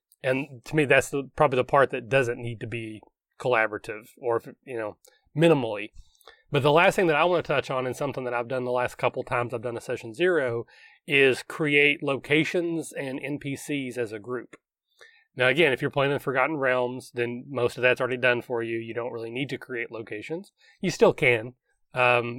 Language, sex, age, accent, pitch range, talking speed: English, male, 30-49, American, 125-150 Hz, 205 wpm